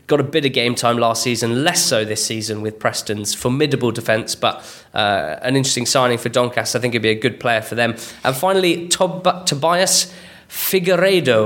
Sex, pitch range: male, 115-145 Hz